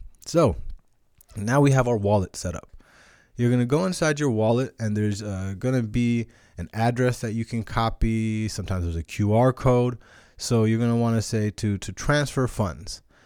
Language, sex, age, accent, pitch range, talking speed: English, male, 20-39, American, 100-125 Hz, 195 wpm